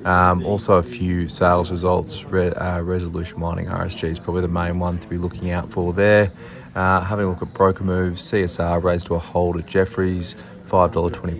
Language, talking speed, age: English, 190 wpm, 20-39